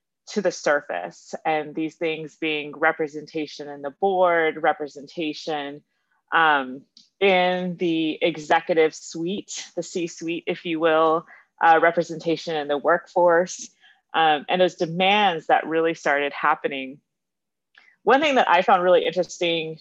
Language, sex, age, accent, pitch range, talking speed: English, female, 30-49, American, 150-180 Hz, 125 wpm